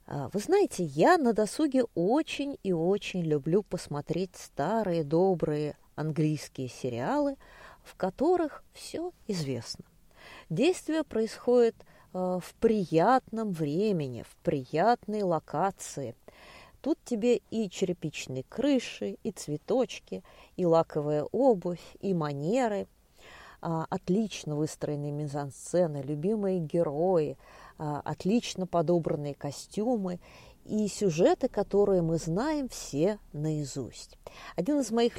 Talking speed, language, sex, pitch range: 95 wpm, Russian, female, 155-220 Hz